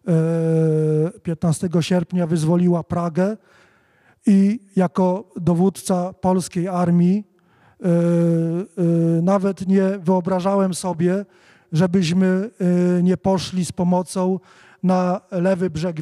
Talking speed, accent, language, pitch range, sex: 80 wpm, native, Polish, 170-195 Hz, male